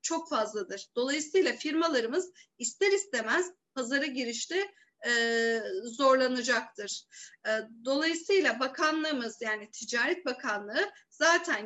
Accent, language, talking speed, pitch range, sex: native, Turkish, 85 wpm, 240-345 Hz, female